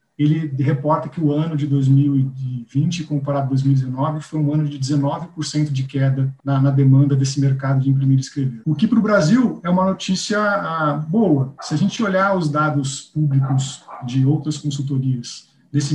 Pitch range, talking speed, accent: 140-175 Hz, 175 wpm, Brazilian